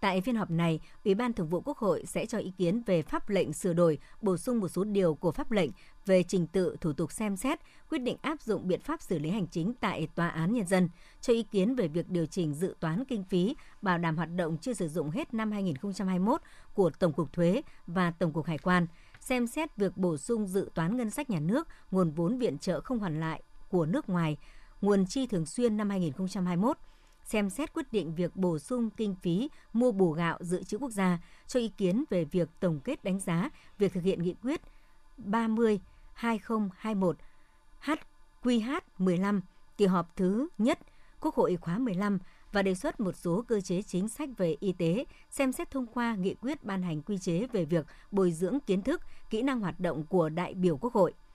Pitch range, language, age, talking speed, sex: 175-230 Hz, Vietnamese, 60-79, 215 wpm, male